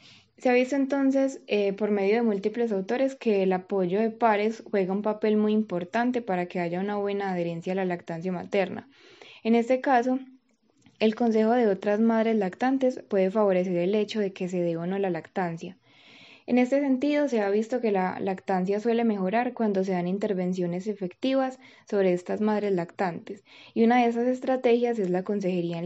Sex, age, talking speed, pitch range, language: female, 10-29, 185 wpm, 185-235 Hz, Spanish